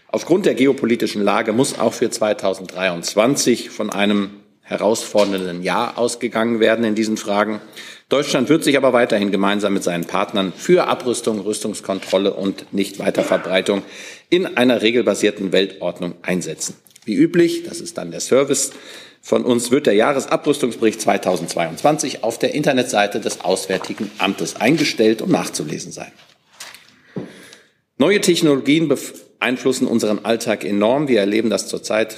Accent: German